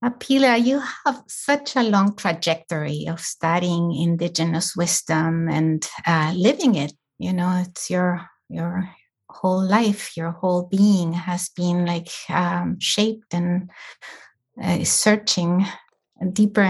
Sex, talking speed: female, 120 wpm